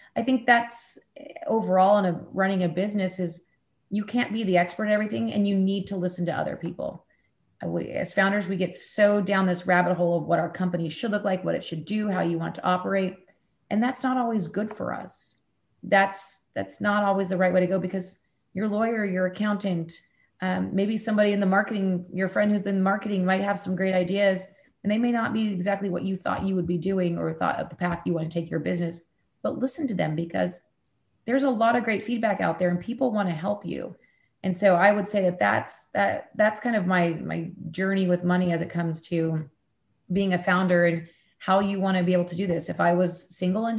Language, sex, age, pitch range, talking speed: English, female, 30-49, 175-205 Hz, 230 wpm